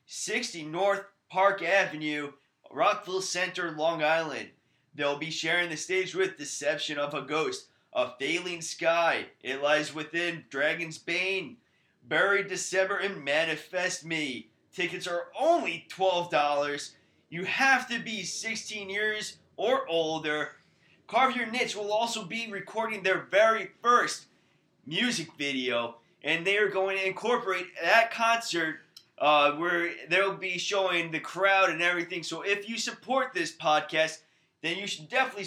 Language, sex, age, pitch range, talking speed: English, male, 20-39, 160-200 Hz, 140 wpm